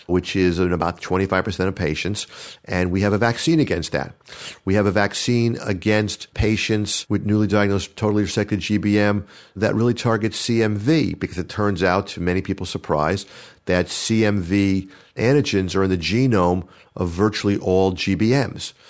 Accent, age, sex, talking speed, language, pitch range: American, 50-69, male, 155 wpm, English, 90-105 Hz